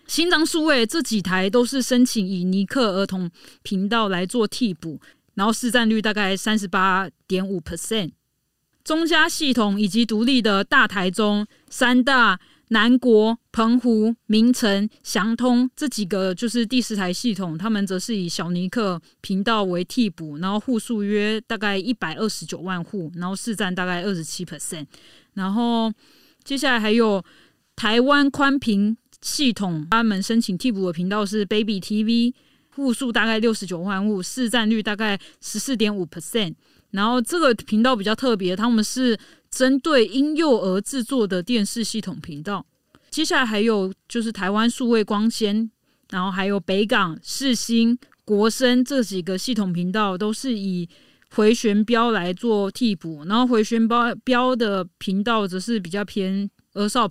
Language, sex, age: Chinese, female, 20-39